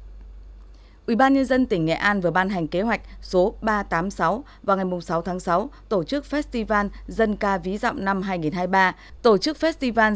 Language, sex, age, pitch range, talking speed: Vietnamese, female, 20-39, 180-230 Hz, 185 wpm